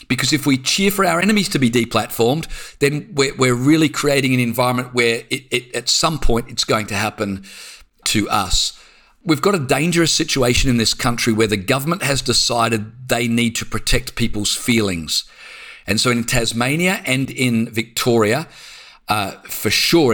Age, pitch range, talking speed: 40-59, 115-150 Hz, 165 wpm